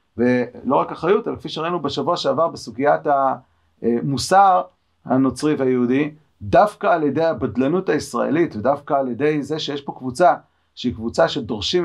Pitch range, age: 125-165 Hz, 40-59